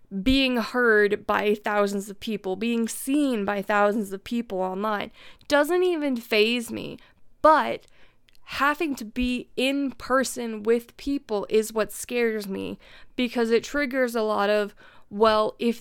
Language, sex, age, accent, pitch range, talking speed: English, female, 20-39, American, 210-250 Hz, 140 wpm